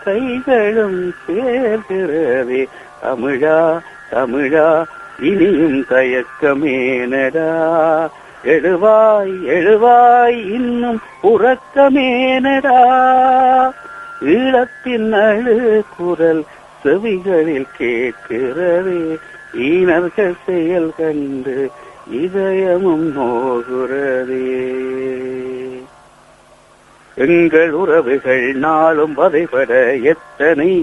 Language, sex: Tamil, male